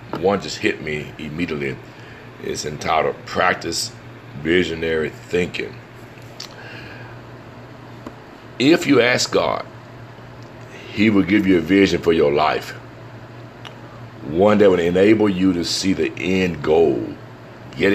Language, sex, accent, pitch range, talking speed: English, male, American, 85-110 Hz, 115 wpm